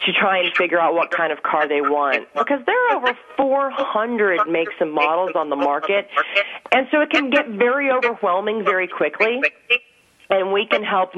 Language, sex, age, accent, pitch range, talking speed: English, female, 40-59, American, 165-250 Hz, 190 wpm